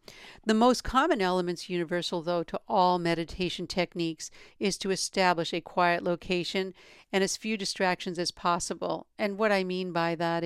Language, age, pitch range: English, 50-69, 165-185 Hz